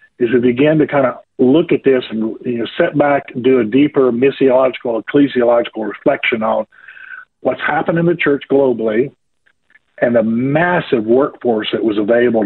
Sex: male